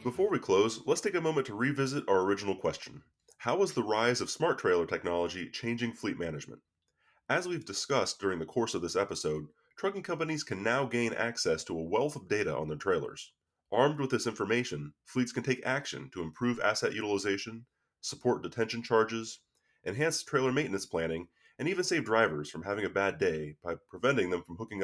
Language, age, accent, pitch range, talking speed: English, 30-49, American, 90-130 Hz, 190 wpm